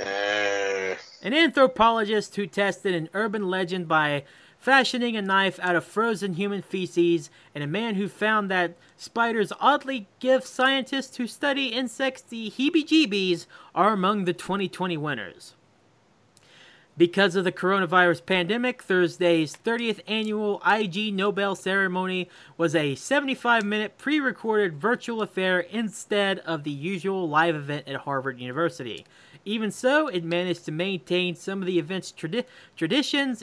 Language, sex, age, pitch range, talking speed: English, male, 20-39, 165-215 Hz, 130 wpm